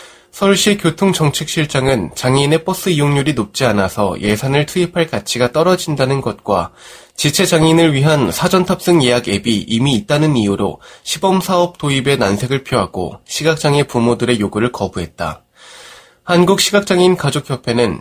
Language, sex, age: Korean, male, 20-39